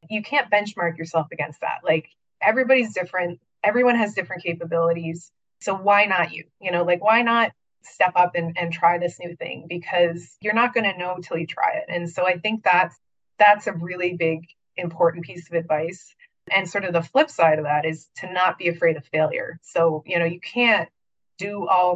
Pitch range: 165-190 Hz